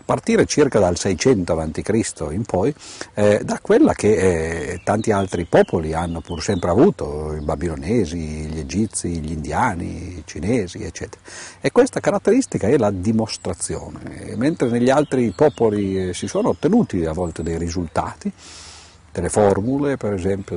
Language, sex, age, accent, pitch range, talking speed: Italian, male, 50-69, native, 85-110 Hz, 145 wpm